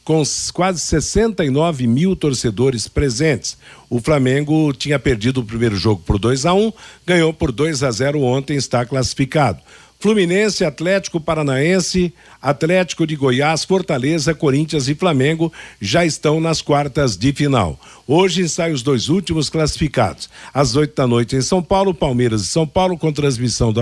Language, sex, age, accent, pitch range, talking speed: Portuguese, male, 60-79, Brazilian, 130-170 Hz, 155 wpm